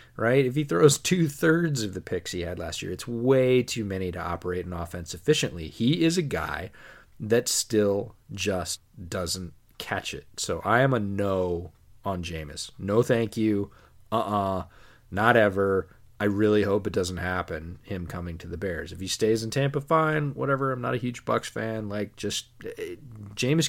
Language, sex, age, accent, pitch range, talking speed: English, male, 30-49, American, 95-115 Hz, 180 wpm